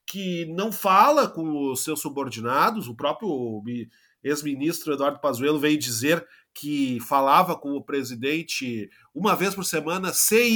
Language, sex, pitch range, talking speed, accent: Portuguese, male, 155-230 Hz, 135 wpm, Brazilian